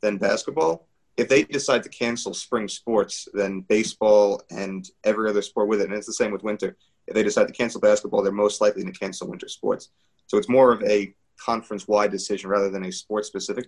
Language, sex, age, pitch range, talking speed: English, male, 30-49, 100-110 Hz, 205 wpm